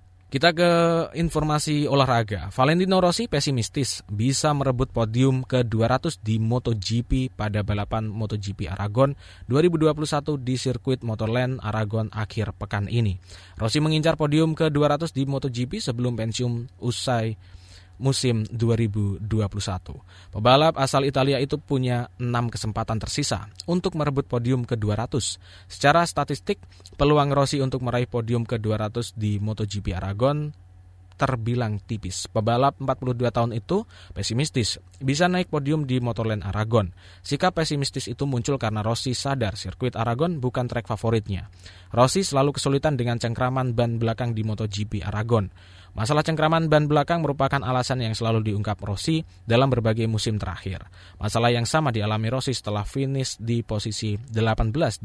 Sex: male